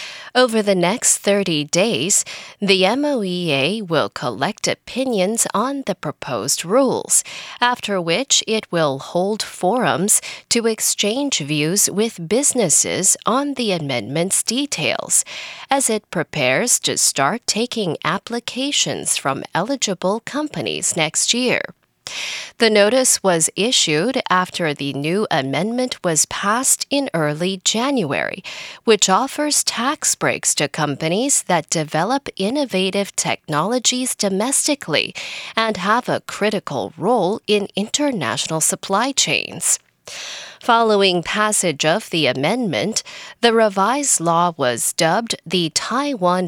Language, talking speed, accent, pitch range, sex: English, 110 wpm, American, 170-245 Hz, female